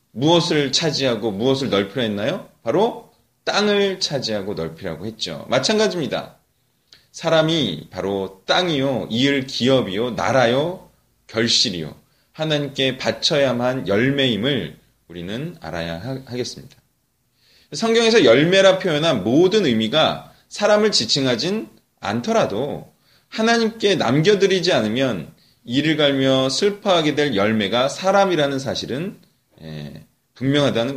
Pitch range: 125-200 Hz